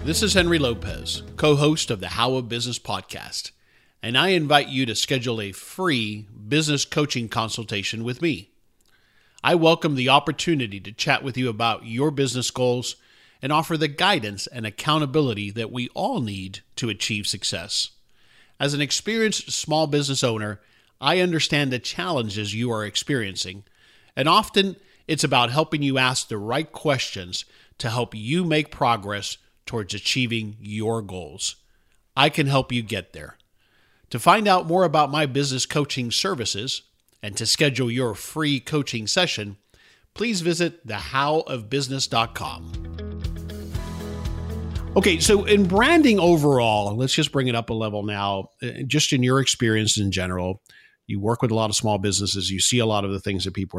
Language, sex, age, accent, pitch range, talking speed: English, male, 50-69, American, 105-150 Hz, 155 wpm